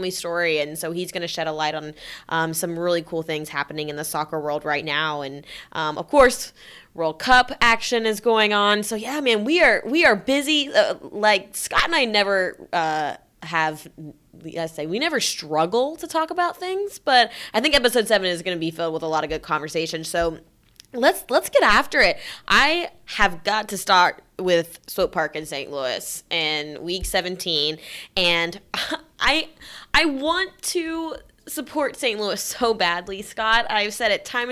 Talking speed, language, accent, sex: 190 wpm, English, American, female